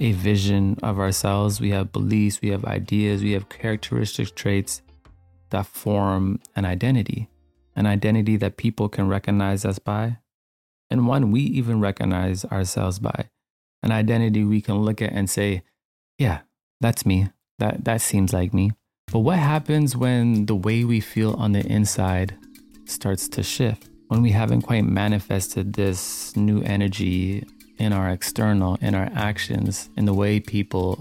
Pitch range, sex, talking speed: 100-110 Hz, male, 155 wpm